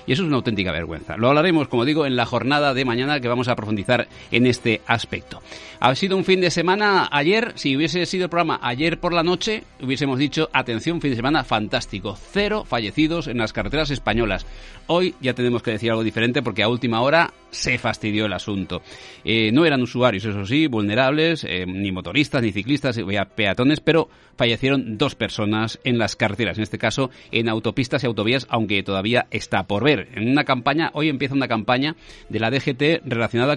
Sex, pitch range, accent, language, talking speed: male, 110-145 Hz, Spanish, Spanish, 195 wpm